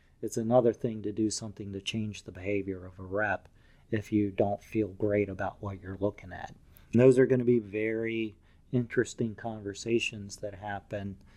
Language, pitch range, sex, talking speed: English, 105-125 Hz, male, 175 wpm